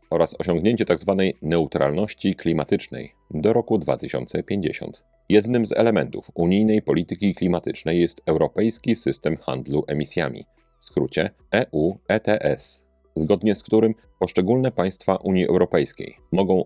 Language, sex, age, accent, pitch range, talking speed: Polish, male, 40-59, native, 80-105 Hz, 110 wpm